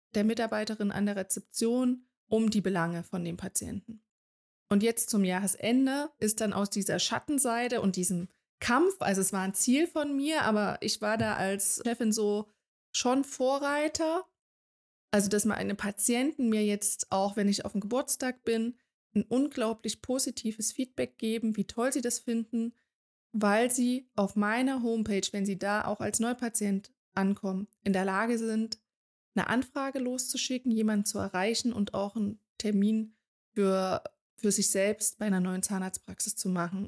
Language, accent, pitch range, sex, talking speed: German, German, 200-245 Hz, female, 160 wpm